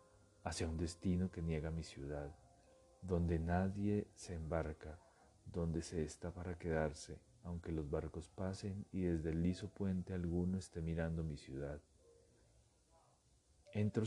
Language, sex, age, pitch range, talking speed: Spanish, male, 30-49, 80-95 Hz, 130 wpm